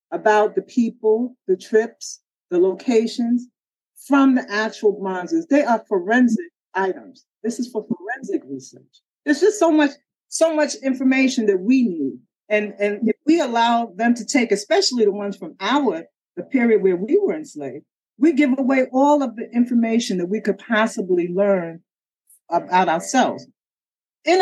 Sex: female